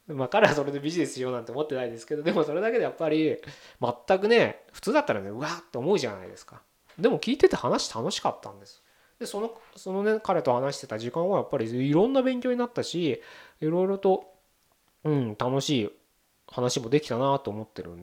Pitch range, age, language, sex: 115-165 Hz, 20-39, Japanese, male